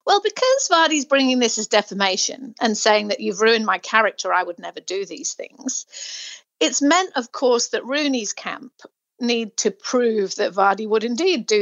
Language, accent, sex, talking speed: English, British, female, 180 wpm